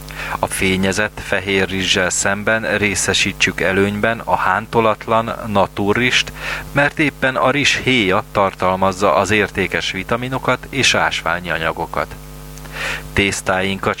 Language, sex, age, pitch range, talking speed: Hungarian, male, 30-49, 95-125 Hz, 100 wpm